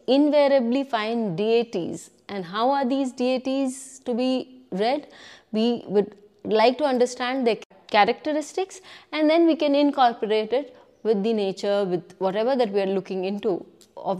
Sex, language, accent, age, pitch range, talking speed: female, English, Indian, 20-39, 205-275 Hz, 150 wpm